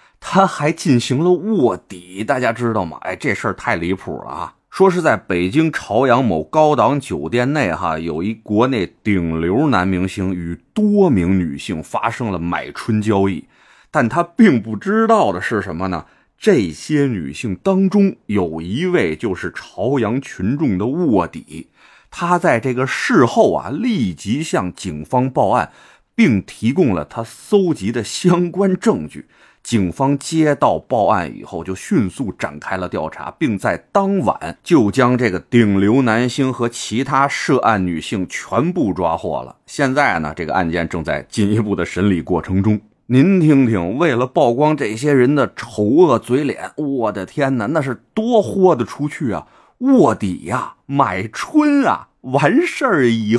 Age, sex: 30-49, male